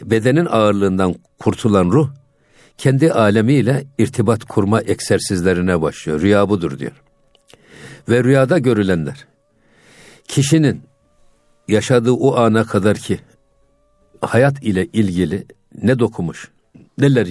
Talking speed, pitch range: 95 wpm, 95-130 Hz